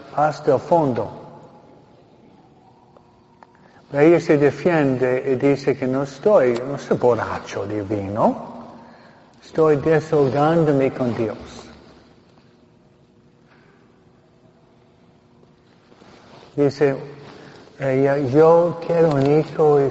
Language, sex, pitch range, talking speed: Spanish, male, 130-170 Hz, 75 wpm